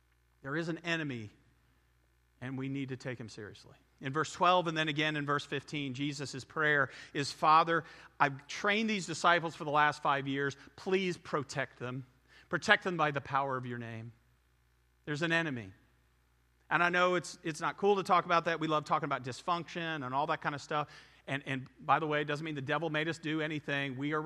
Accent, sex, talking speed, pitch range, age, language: American, male, 210 wpm, 135-175 Hz, 40-59, English